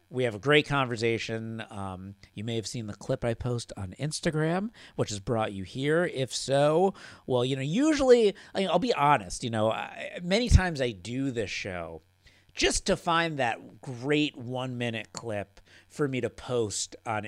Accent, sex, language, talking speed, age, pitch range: American, male, English, 175 wpm, 50-69, 105-145 Hz